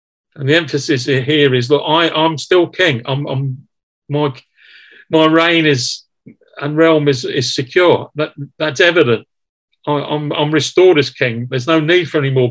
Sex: male